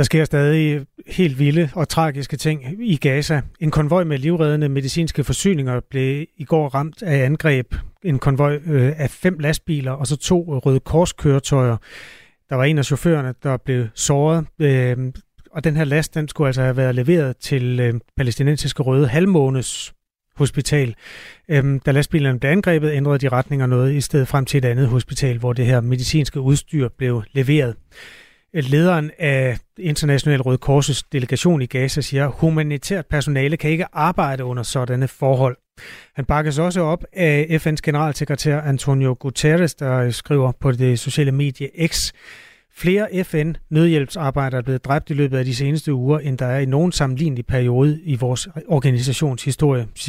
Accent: native